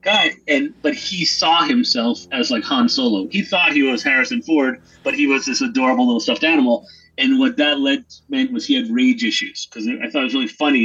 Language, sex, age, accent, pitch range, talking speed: English, male, 30-49, American, 240-280 Hz, 225 wpm